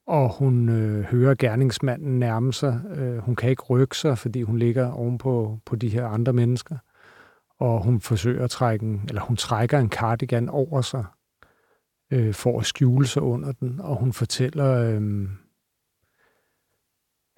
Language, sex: Danish, male